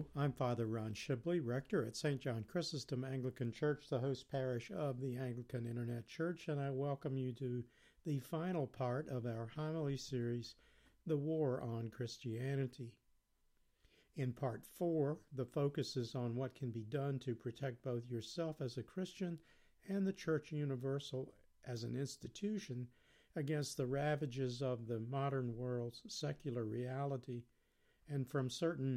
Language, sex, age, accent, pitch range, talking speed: English, male, 50-69, American, 125-145 Hz, 150 wpm